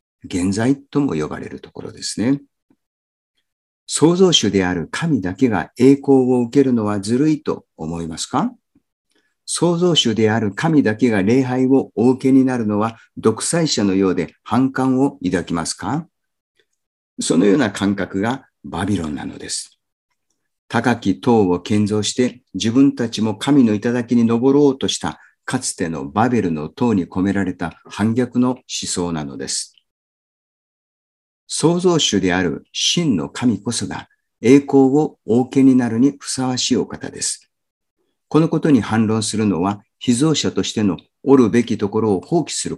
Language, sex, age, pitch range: Japanese, male, 50-69, 100-135 Hz